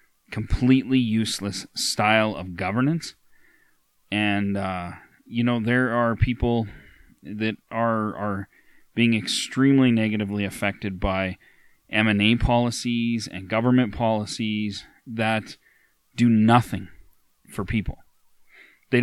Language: English